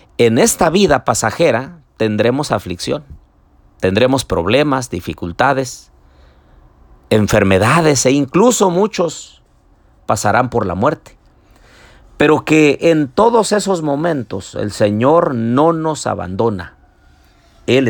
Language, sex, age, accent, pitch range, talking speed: Spanish, male, 50-69, Mexican, 100-150 Hz, 95 wpm